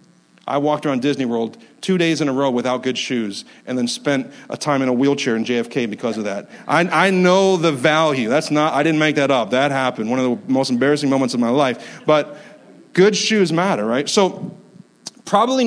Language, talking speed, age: English, 215 wpm, 40-59